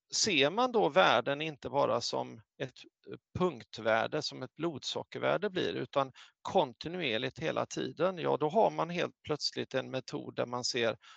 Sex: male